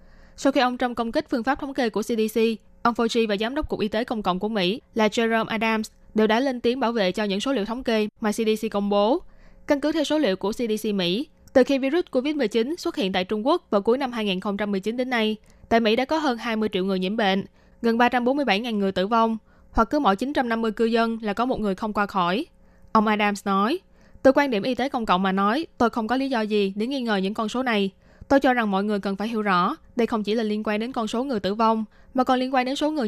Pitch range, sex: 205-255 Hz, female